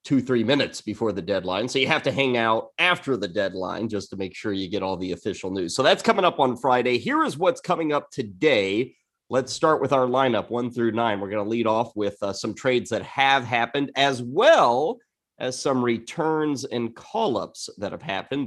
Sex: male